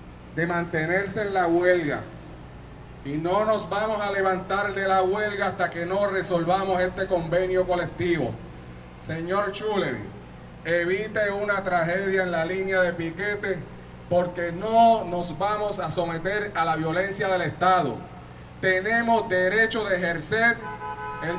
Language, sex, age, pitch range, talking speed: Spanish, male, 30-49, 175-220 Hz, 130 wpm